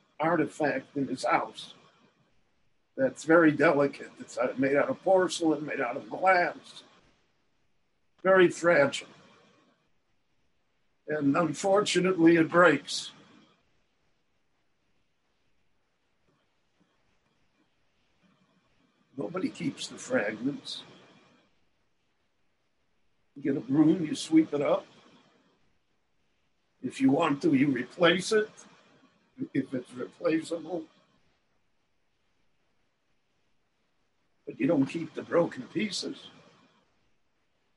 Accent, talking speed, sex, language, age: American, 80 wpm, male, English, 60-79